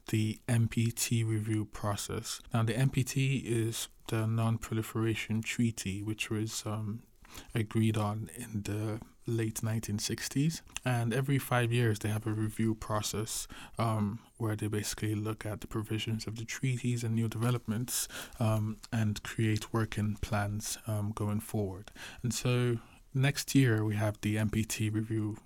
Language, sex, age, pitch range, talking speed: English, male, 20-39, 105-115 Hz, 140 wpm